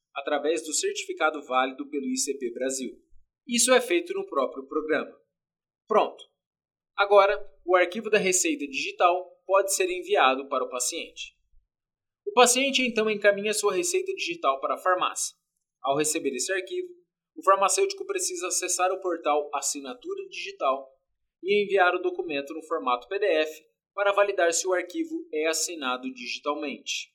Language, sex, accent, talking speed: Portuguese, male, Brazilian, 140 wpm